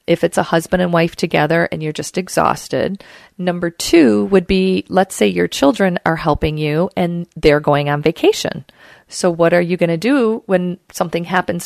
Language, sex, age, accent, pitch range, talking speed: English, female, 40-59, American, 165-205 Hz, 190 wpm